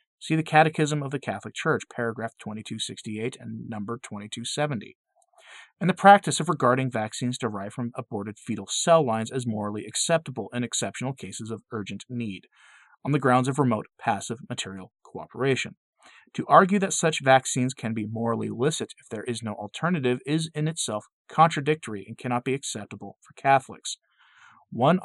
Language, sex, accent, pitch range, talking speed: English, male, American, 110-155 Hz, 160 wpm